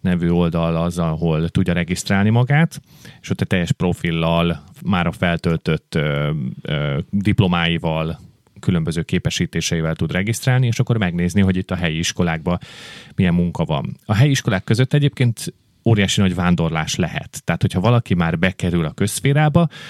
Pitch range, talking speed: 90-120 Hz, 150 wpm